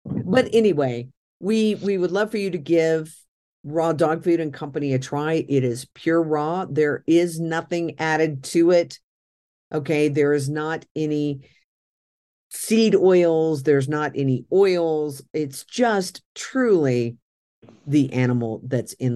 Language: English